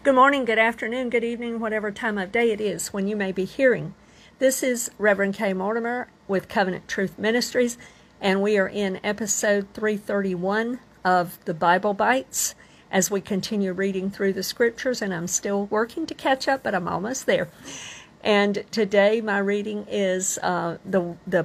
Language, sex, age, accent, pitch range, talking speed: English, female, 50-69, American, 180-225 Hz, 175 wpm